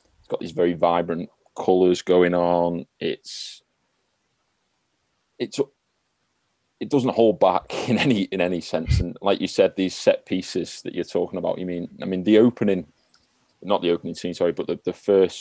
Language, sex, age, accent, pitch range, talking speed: English, male, 30-49, British, 85-95 Hz, 170 wpm